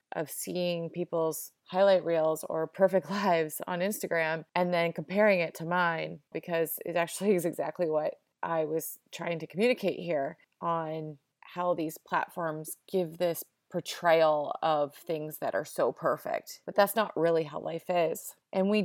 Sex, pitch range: female, 165-195 Hz